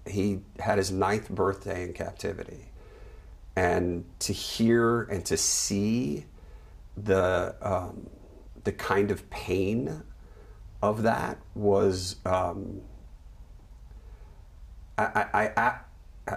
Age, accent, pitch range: 50-69, American, 85-100 Hz